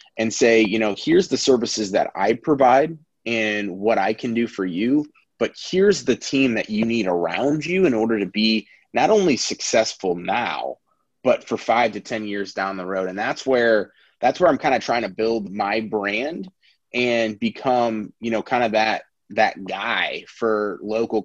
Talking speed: 190 wpm